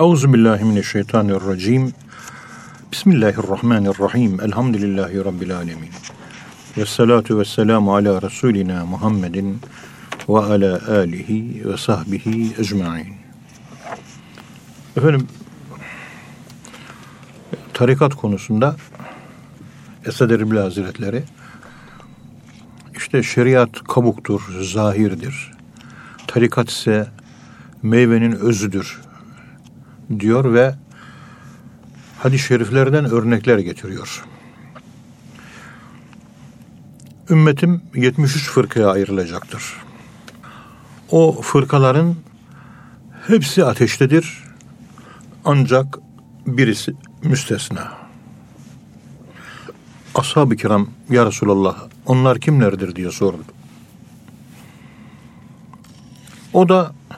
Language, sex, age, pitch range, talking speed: Turkish, male, 50-69, 100-130 Hz, 60 wpm